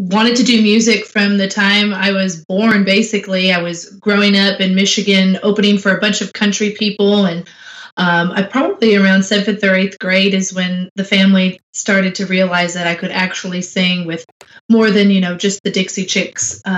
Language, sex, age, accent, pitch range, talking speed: English, female, 20-39, American, 175-205 Hz, 195 wpm